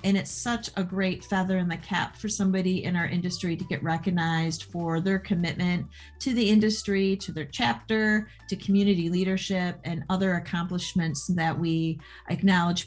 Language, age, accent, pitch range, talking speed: English, 40-59, American, 165-195 Hz, 165 wpm